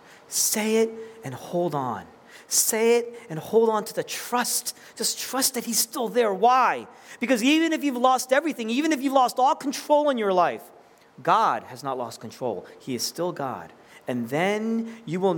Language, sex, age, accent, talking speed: English, male, 40-59, American, 185 wpm